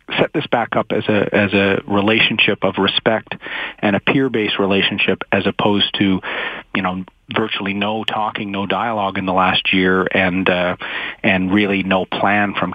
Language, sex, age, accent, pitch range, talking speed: English, male, 40-59, American, 95-120 Hz, 175 wpm